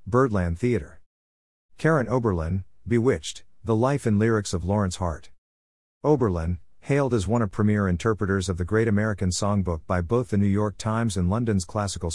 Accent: American